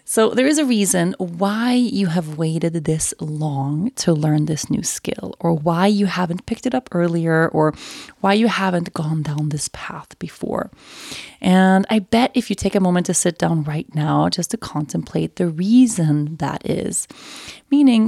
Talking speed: 180 wpm